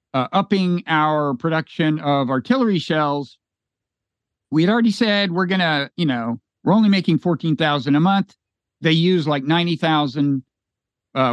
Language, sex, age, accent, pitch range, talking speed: English, male, 50-69, American, 140-195 Hz, 145 wpm